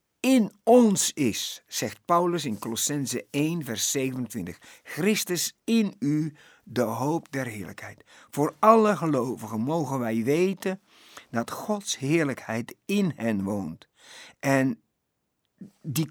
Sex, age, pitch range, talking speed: male, 60-79, 120-165 Hz, 115 wpm